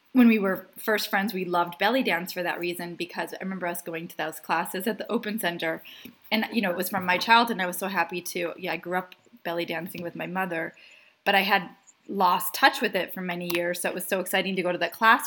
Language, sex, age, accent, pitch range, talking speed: English, female, 20-39, American, 175-210 Hz, 265 wpm